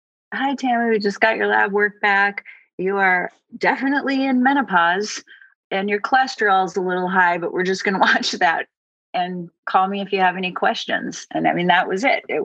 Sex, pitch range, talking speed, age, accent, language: female, 160-210 Hz, 205 wpm, 30-49, American, English